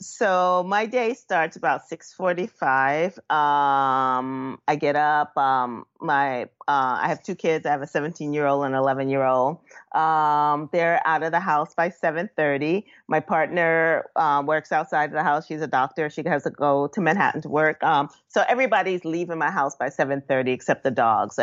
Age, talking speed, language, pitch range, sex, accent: 30-49, 170 wpm, English, 140-170 Hz, female, American